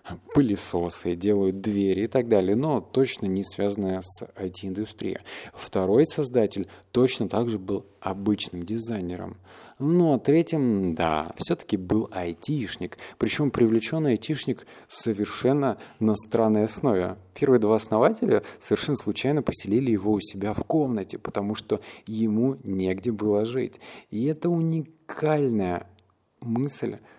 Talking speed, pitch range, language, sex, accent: 115 wpm, 95-115 Hz, Russian, male, native